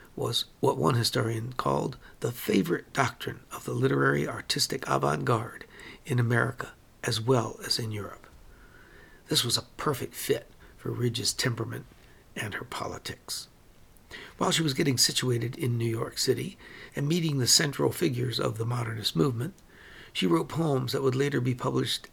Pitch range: 120-140 Hz